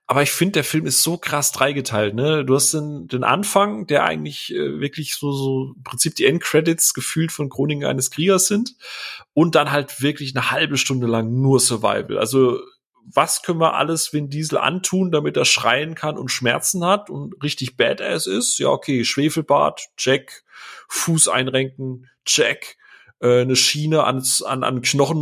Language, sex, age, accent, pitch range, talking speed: German, male, 30-49, German, 130-165 Hz, 175 wpm